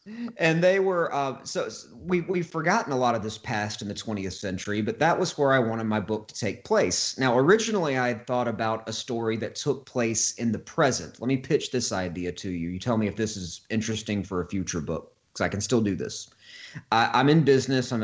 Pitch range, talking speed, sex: 105-130 Hz, 240 wpm, male